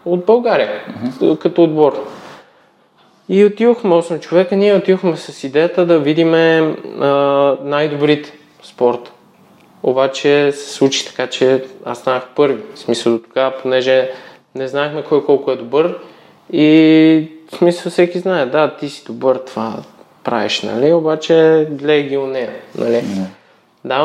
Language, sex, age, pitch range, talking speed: Bulgarian, male, 20-39, 130-160 Hz, 125 wpm